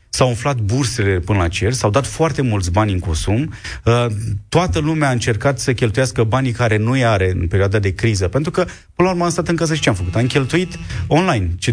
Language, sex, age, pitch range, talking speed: Romanian, male, 30-49, 100-135 Hz, 225 wpm